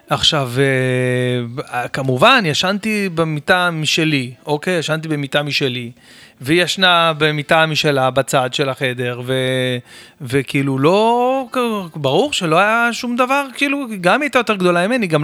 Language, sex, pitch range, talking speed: Hebrew, male, 145-220 Hz, 120 wpm